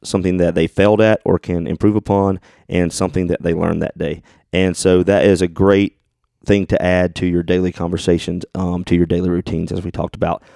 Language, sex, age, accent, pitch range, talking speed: English, male, 30-49, American, 90-105 Hz, 215 wpm